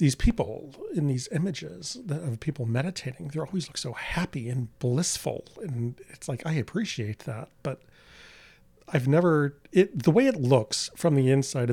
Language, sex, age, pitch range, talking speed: English, male, 40-59, 125-150 Hz, 165 wpm